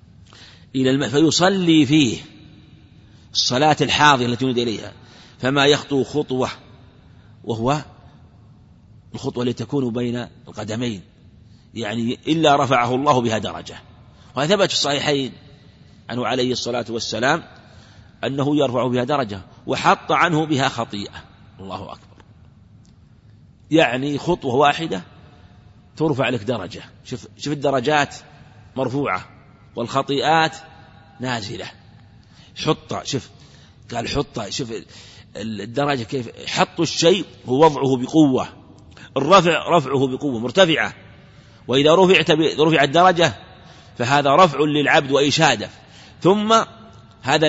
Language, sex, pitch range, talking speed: Arabic, male, 115-150 Hz, 100 wpm